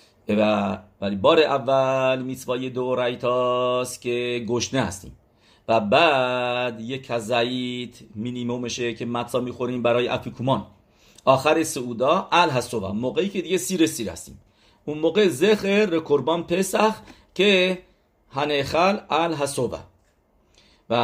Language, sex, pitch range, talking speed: English, male, 105-140 Hz, 115 wpm